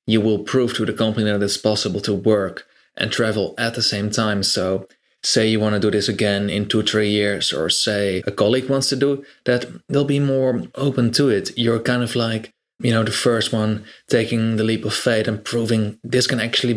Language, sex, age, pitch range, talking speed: English, male, 20-39, 105-125 Hz, 220 wpm